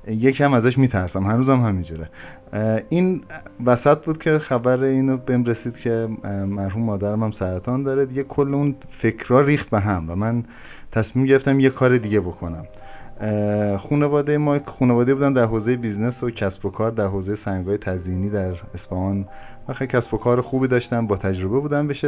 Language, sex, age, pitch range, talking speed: Persian, male, 30-49, 110-145 Hz, 175 wpm